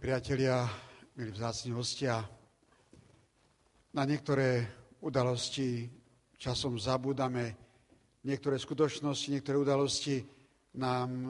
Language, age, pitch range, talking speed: Slovak, 50-69, 125-140 Hz, 75 wpm